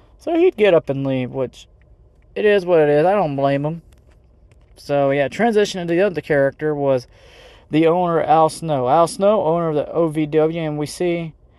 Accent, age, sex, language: American, 20-39, male, English